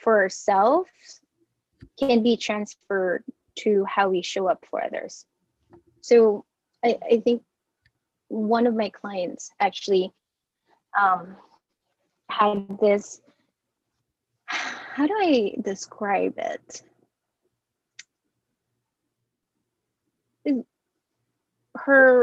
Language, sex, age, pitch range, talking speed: English, female, 20-39, 190-240 Hz, 80 wpm